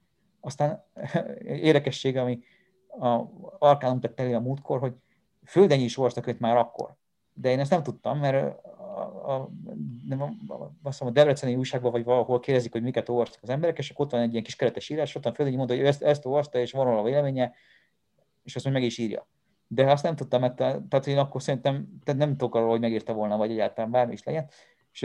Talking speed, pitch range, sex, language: 195 wpm, 120-150 Hz, male, Hungarian